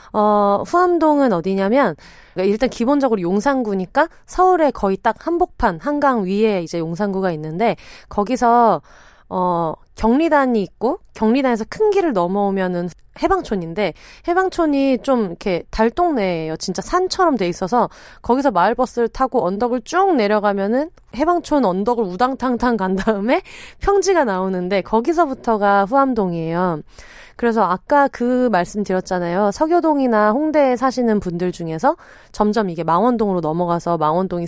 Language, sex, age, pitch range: Korean, female, 30-49, 180-265 Hz